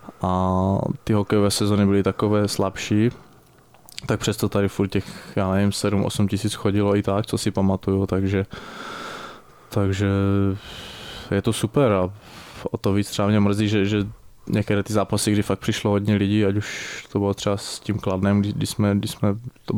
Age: 20-39